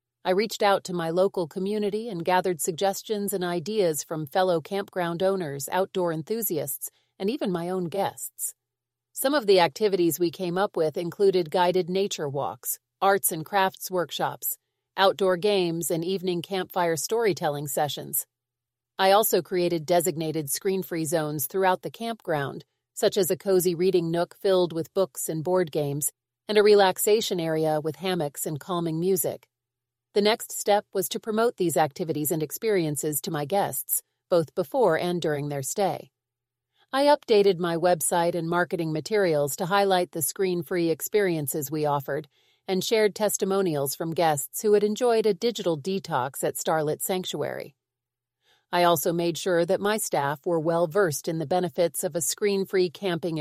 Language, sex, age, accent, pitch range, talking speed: English, female, 40-59, American, 155-195 Hz, 155 wpm